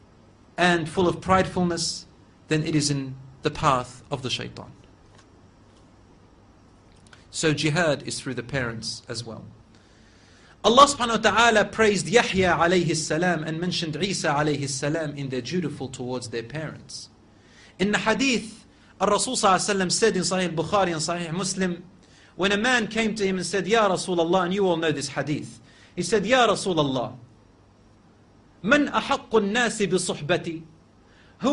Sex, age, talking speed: male, 40-59, 145 wpm